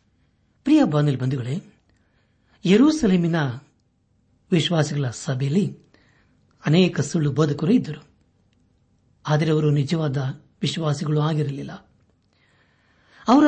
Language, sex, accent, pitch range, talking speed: Kannada, male, native, 125-180 Hz, 70 wpm